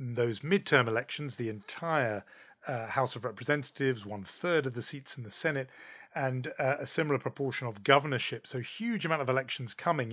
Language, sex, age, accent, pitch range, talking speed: English, male, 40-59, British, 125-165 Hz, 180 wpm